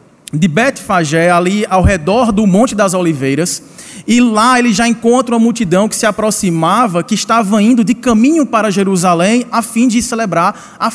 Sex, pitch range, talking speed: male, 195-245 Hz, 170 wpm